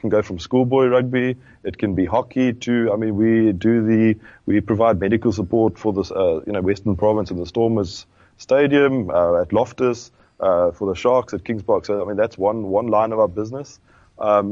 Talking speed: 210 wpm